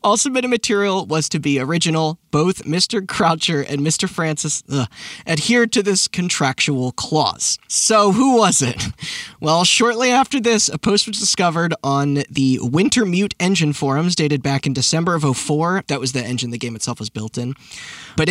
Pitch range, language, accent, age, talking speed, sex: 150-215 Hz, English, American, 20-39, 175 wpm, male